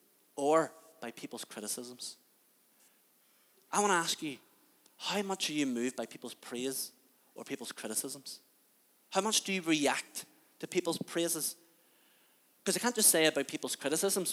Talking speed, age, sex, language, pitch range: 150 wpm, 30-49, male, English, 125-175 Hz